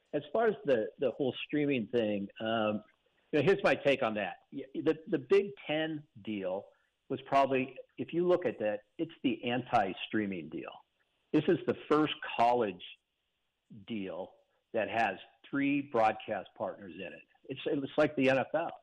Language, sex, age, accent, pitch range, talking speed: English, male, 60-79, American, 105-140 Hz, 160 wpm